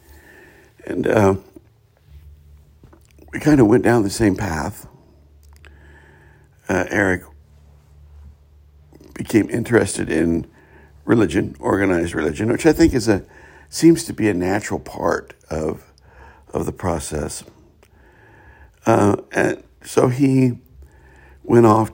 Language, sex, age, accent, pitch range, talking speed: English, male, 60-79, American, 75-95 Hz, 105 wpm